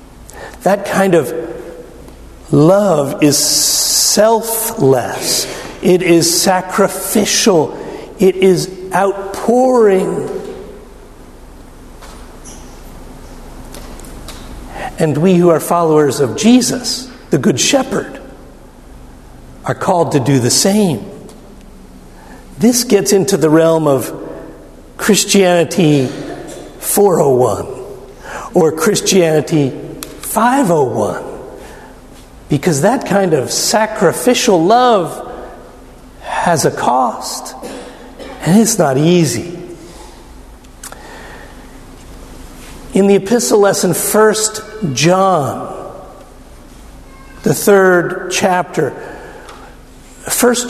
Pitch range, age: 165-210 Hz, 50-69